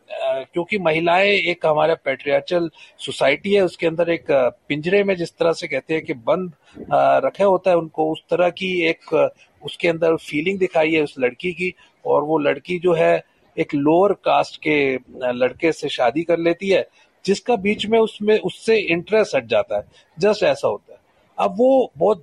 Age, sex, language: 40-59, male, Hindi